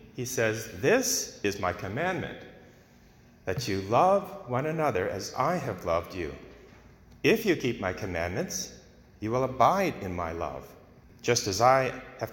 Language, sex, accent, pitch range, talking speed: English, male, American, 105-140 Hz, 150 wpm